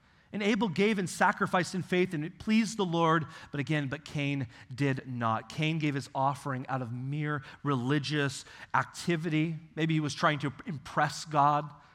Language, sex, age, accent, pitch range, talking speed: English, male, 30-49, American, 135-175 Hz, 170 wpm